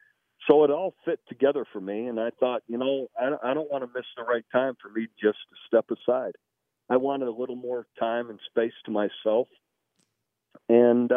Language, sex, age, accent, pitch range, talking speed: English, male, 50-69, American, 110-135 Hz, 200 wpm